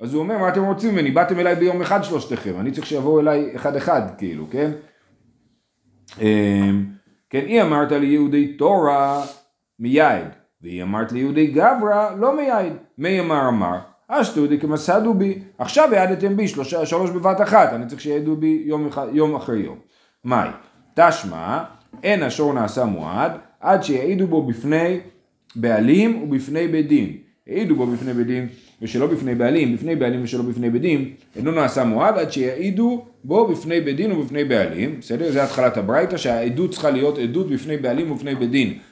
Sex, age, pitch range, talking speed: male, 40-59, 120-170 Hz, 155 wpm